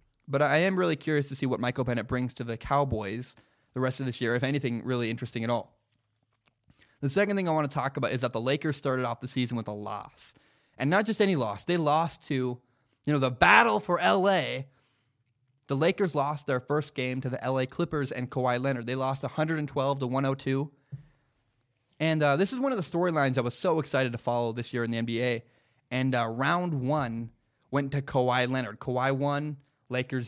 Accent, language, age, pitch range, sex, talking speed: American, English, 20-39, 125-155 Hz, male, 210 wpm